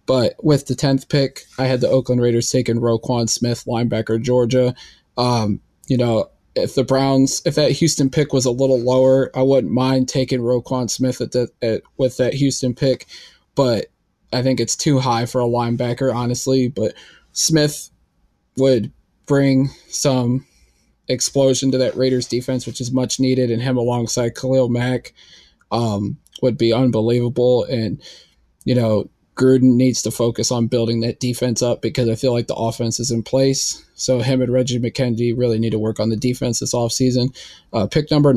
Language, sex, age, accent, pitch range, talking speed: English, male, 20-39, American, 120-130 Hz, 175 wpm